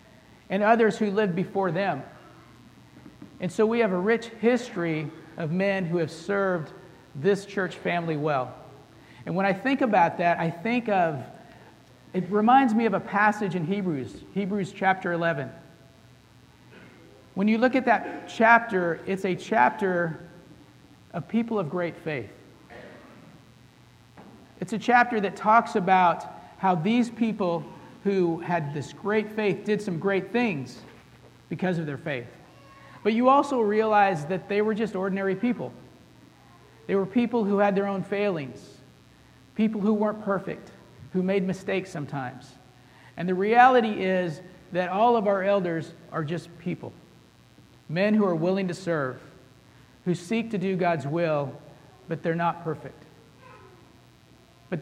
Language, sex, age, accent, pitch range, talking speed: English, male, 50-69, American, 160-205 Hz, 145 wpm